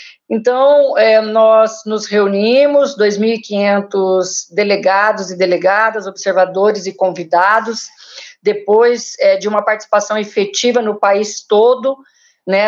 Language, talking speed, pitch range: Portuguese, 105 wpm, 200-245 Hz